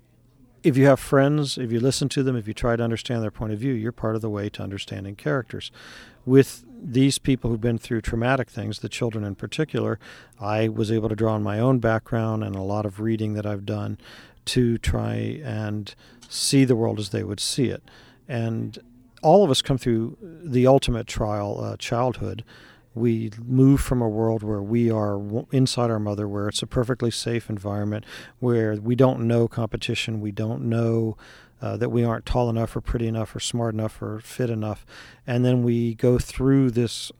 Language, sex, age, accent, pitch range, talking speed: English, male, 50-69, American, 110-125 Hz, 200 wpm